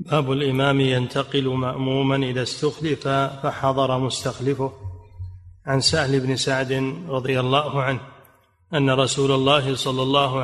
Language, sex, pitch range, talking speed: Arabic, male, 125-140 Hz, 115 wpm